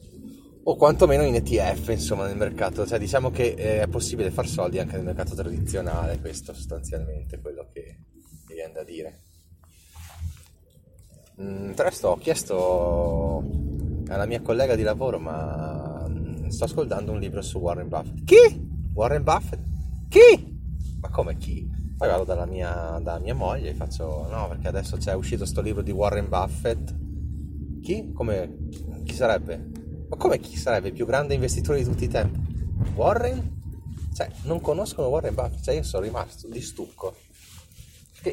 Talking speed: 155 wpm